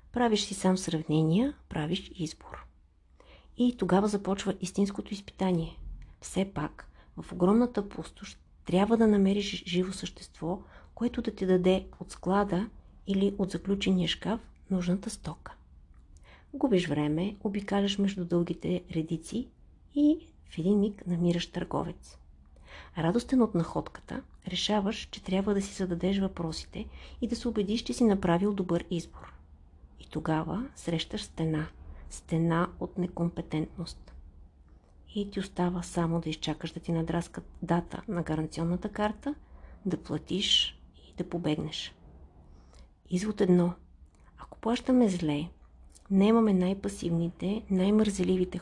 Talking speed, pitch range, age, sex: 120 wpm, 155-200 Hz, 50-69, female